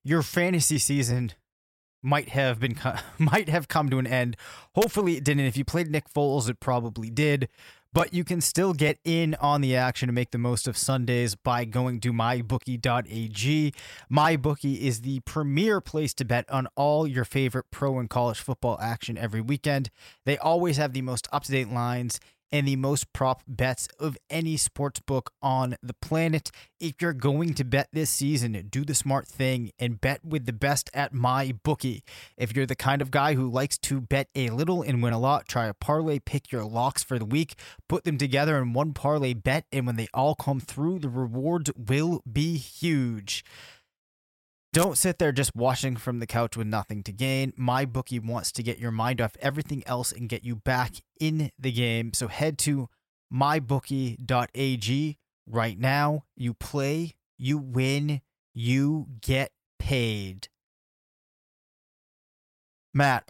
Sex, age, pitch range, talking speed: male, 20-39, 120-145 Hz, 175 wpm